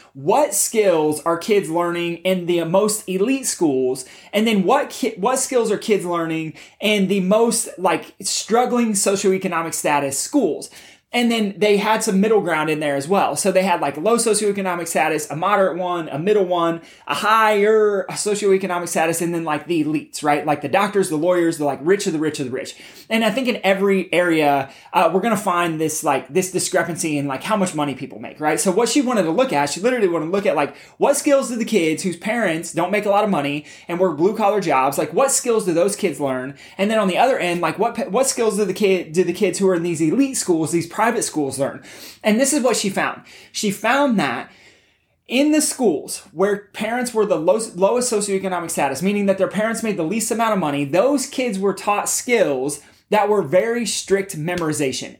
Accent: American